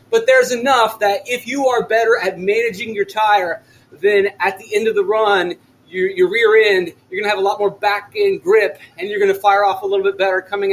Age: 30-49